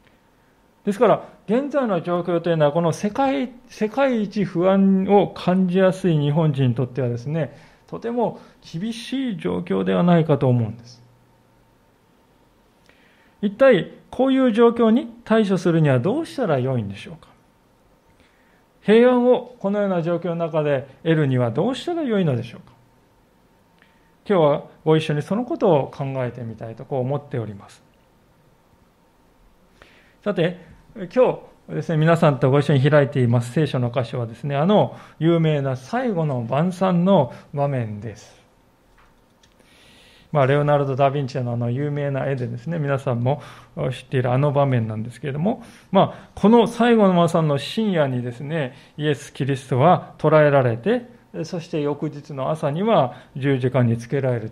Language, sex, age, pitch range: Japanese, male, 40-59, 130-200 Hz